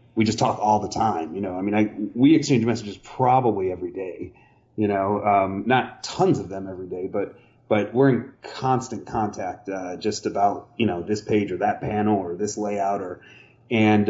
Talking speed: 200 wpm